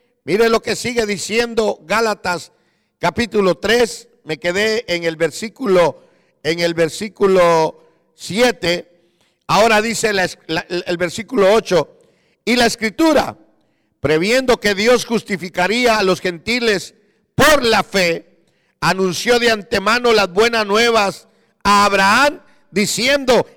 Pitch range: 185-245 Hz